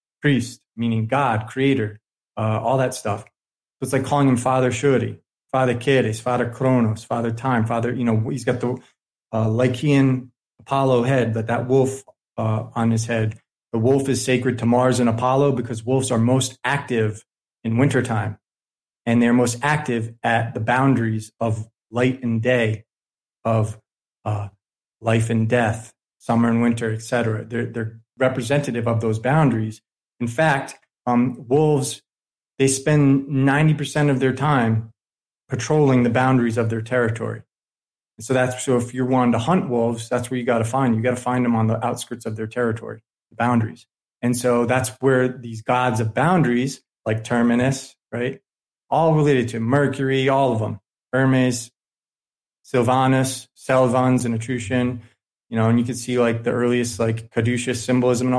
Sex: male